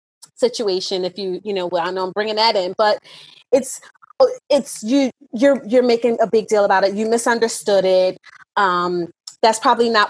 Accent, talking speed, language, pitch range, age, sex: American, 180 wpm, English, 205-265 Hz, 30-49, female